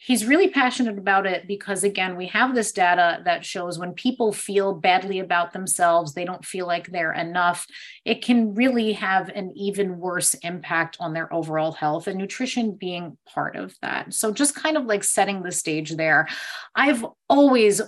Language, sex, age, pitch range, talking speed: English, female, 30-49, 175-225 Hz, 180 wpm